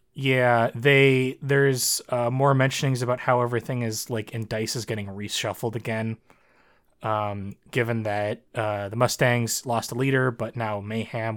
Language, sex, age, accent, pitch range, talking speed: English, male, 20-39, American, 115-140 Hz, 155 wpm